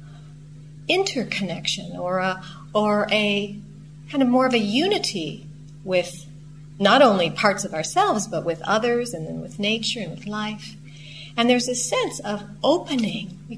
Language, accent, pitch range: English, American, 150-235 Hz